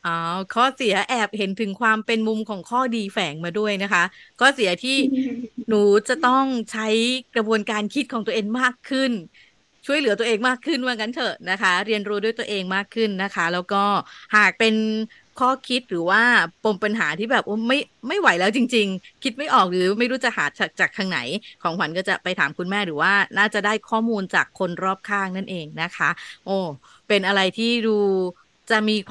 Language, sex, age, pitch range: Thai, female, 20-39, 190-240 Hz